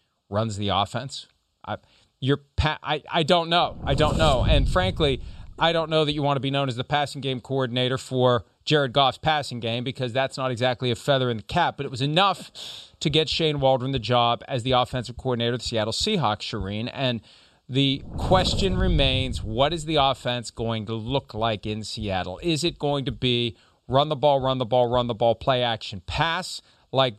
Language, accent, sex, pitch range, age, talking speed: English, American, male, 120-145 Hz, 40-59, 210 wpm